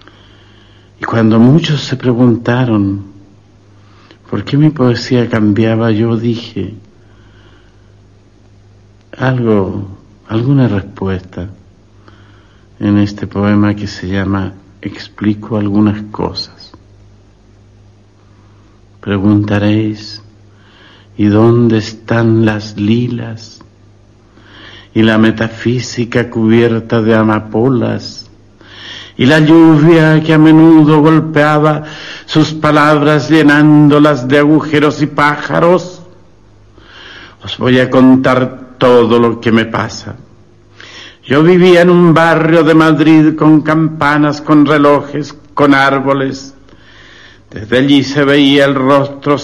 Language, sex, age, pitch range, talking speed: Spanish, male, 60-79, 105-140 Hz, 95 wpm